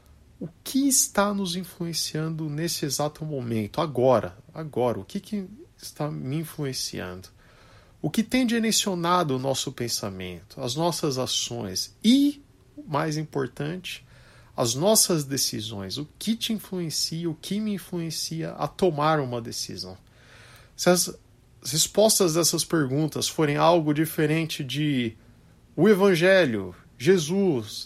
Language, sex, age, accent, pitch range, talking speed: Portuguese, male, 50-69, Brazilian, 115-160 Hz, 120 wpm